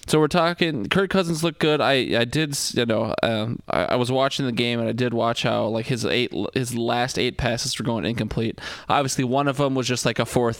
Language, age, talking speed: English, 20-39, 245 wpm